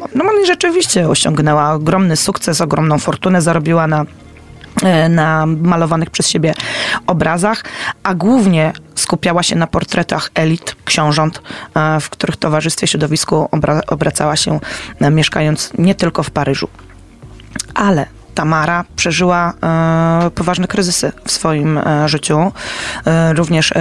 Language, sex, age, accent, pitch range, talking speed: Polish, female, 20-39, native, 150-175 Hz, 110 wpm